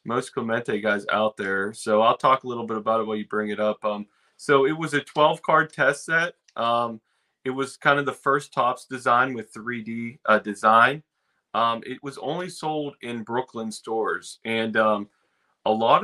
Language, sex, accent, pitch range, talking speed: English, male, American, 115-145 Hz, 195 wpm